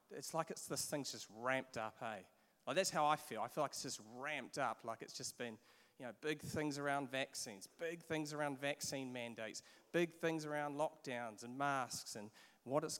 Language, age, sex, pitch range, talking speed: English, 30-49, male, 130-185 Hz, 210 wpm